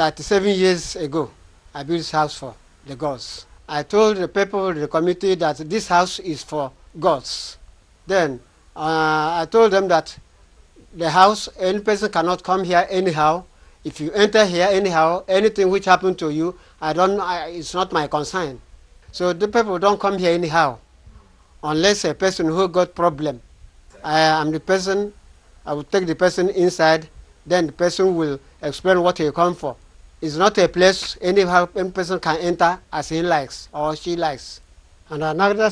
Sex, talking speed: male, 170 wpm